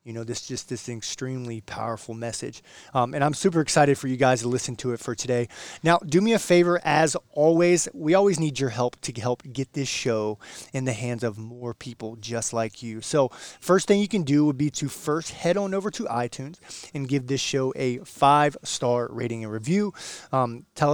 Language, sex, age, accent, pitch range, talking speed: English, male, 20-39, American, 120-155 Hz, 210 wpm